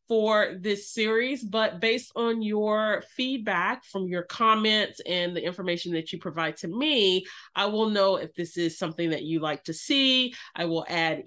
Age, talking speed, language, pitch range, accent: 30-49, 180 wpm, English, 185-235 Hz, American